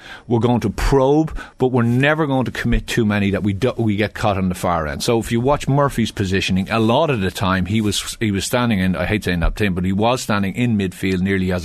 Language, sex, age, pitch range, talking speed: English, male, 30-49, 95-125 Hz, 265 wpm